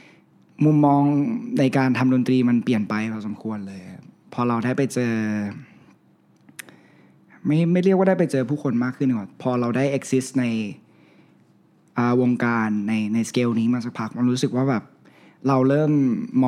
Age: 20-39